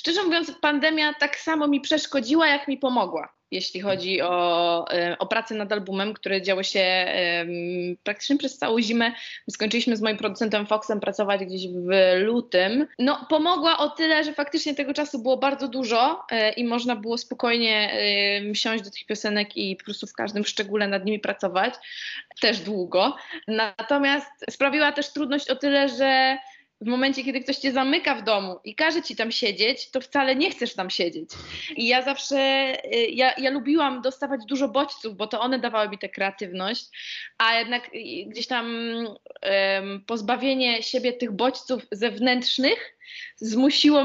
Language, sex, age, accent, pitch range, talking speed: Polish, female, 20-39, native, 215-275 Hz, 160 wpm